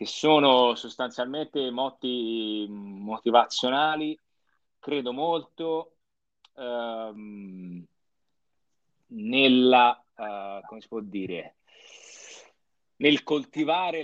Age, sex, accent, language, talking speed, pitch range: 30-49, male, native, Italian, 70 wpm, 110-160 Hz